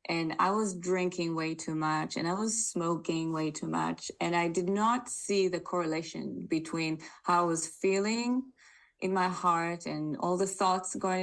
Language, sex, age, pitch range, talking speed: English, female, 20-39, 160-190 Hz, 180 wpm